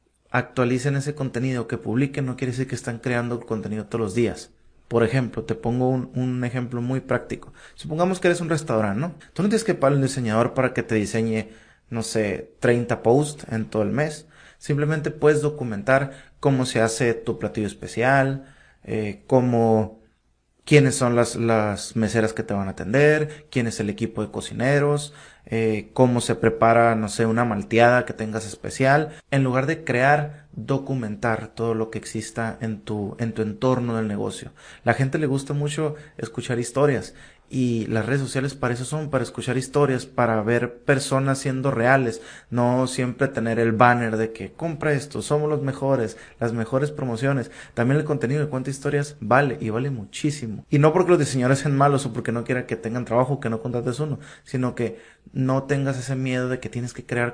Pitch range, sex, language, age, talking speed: 115-140 Hz, male, English, 30-49, 190 wpm